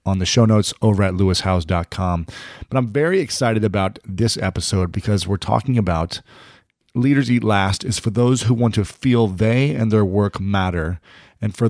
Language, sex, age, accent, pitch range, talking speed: English, male, 30-49, American, 95-120 Hz, 180 wpm